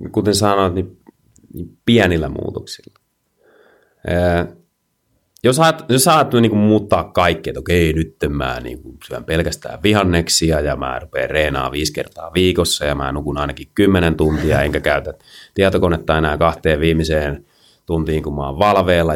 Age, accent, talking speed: 30-49, native, 140 wpm